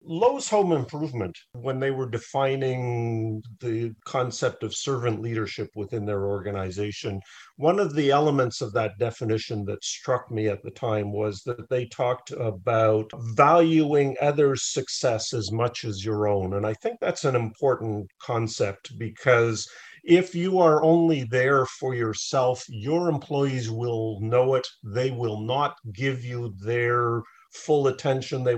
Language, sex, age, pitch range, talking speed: English, male, 50-69, 115-145 Hz, 145 wpm